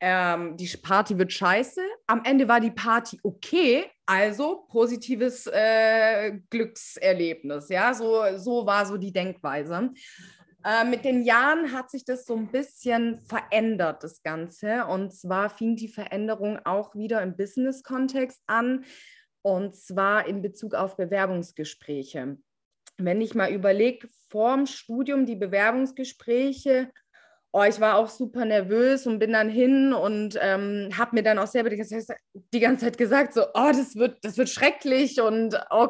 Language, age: German, 20-39